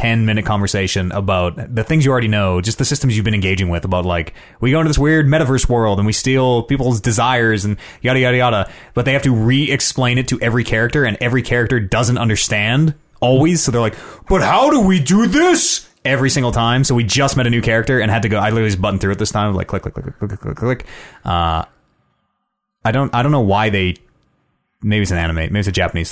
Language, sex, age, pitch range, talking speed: English, male, 30-49, 100-135 Hz, 240 wpm